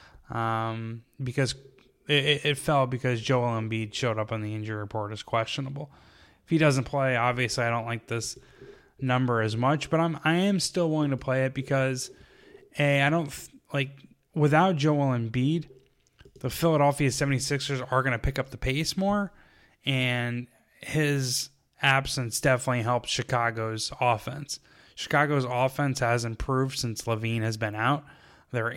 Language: English